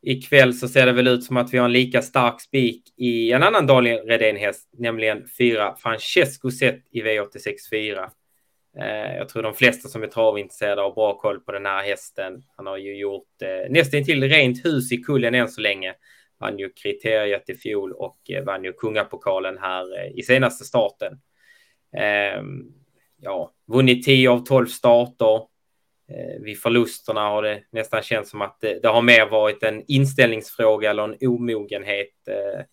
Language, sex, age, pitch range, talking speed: Swedish, male, 20-39, 105-130 Hz, 180 wpm